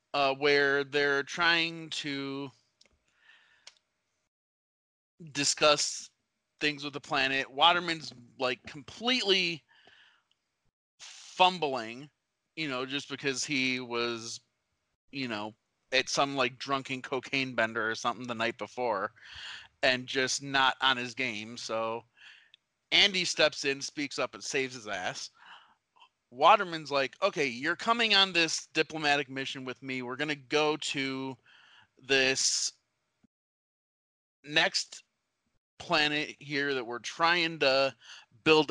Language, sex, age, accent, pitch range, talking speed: English, male, 30-49, American, 120-155 Hz, 115 wpm